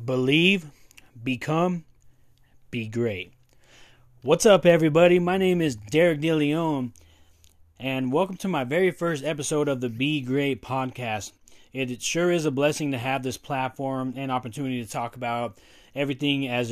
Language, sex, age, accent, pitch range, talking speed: English, male, 30-49, American, 120-150 Hz, 145 wpm